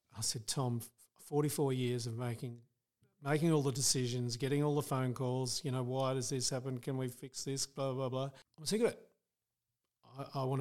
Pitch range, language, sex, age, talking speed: 120-140 Hz, English, male, 40-59, 200 wpm